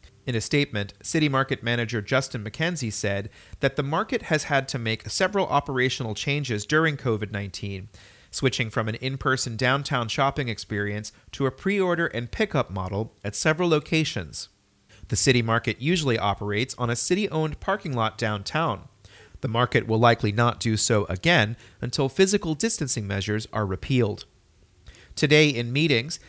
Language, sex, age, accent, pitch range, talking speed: English, male, 30-49, American, 110-145 Hz, 150 wpm